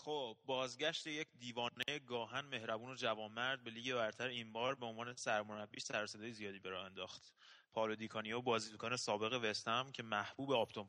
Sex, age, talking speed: male, 30-49, 155 wpm